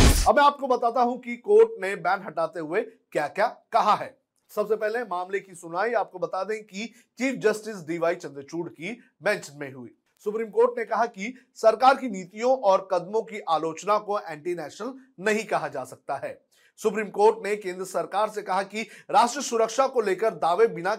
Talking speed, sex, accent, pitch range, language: 190 wpm, male, native, 170-220 Hz, Hindi